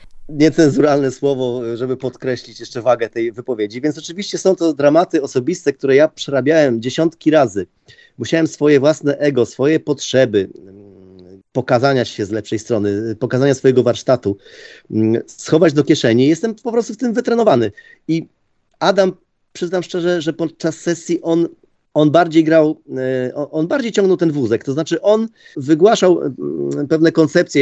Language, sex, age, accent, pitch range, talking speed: Polish, male, 30-49, native, 125-165 Hz, 140 wpm